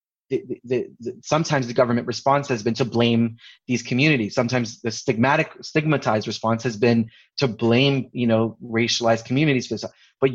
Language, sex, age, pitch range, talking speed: English, male, 20-39, 120-145 Hz, 175 wpm